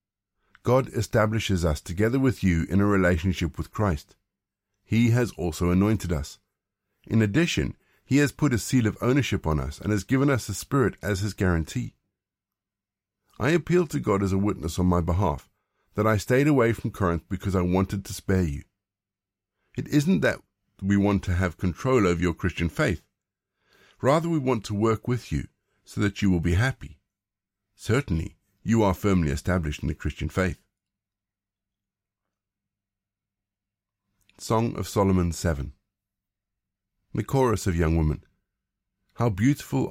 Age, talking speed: 50-69, 155 wpm